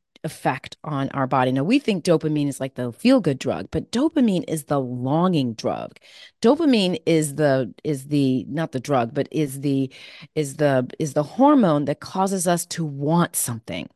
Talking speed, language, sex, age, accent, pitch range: 180 wpm, English, female, 30-49, American, 150-200 Hz